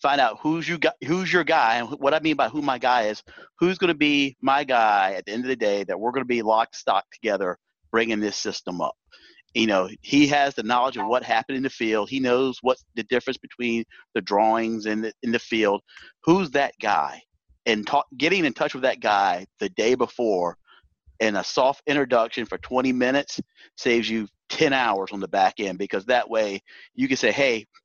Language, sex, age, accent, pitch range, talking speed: English, male, 40-59, American, 120-160 Hz, 220 wpm